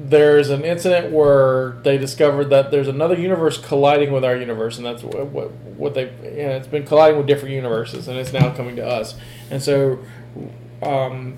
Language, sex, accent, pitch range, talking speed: English, male, American, 120-140 Hz, 190 wpm